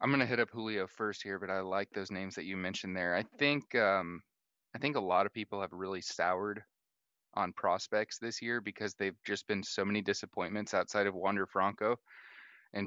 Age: 30-49